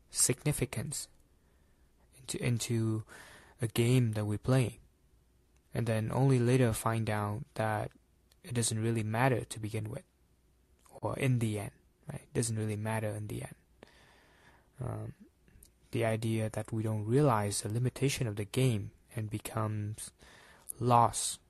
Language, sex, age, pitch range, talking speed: English, male, 20-39, 100-120 Hz, 135 wpm